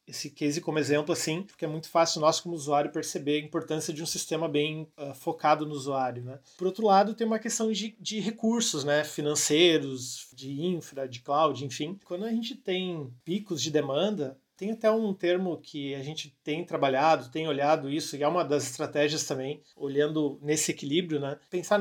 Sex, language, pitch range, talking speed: male, Portuguese, 150-180 Hz, 190 wpm